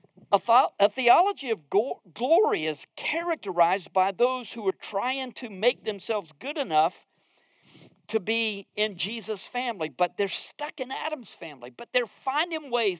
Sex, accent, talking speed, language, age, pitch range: male, American, 150 wpm, English, 50-69, 190-270 Hz